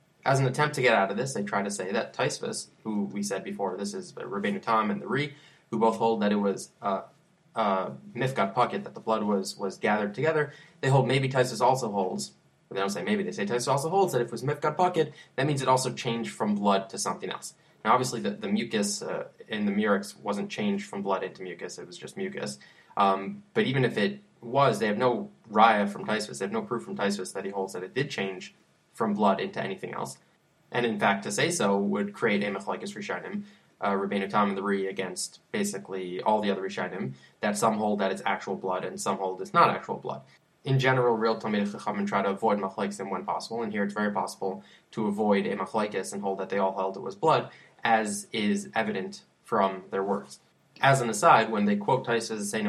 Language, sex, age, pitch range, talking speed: English, male, 20-39, 100-135 Hz, 230 wpm